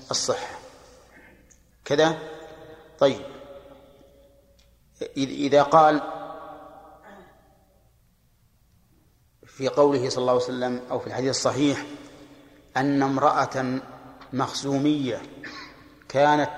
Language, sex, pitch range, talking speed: Arabic, male, 130-155 Hz, 70 wpm